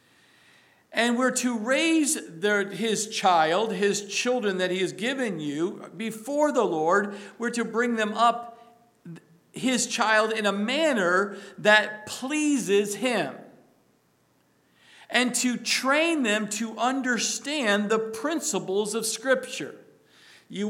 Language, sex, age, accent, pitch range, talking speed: English, male, 50-69, American, 200-250 Hz, 115 wpm